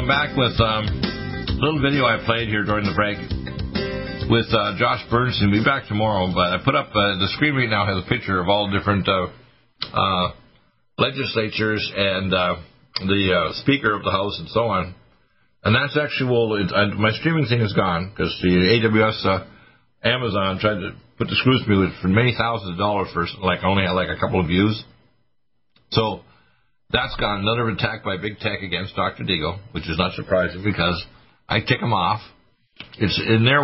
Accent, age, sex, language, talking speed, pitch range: American, 50-69, male, English, 195 wpm, 95-115 Hz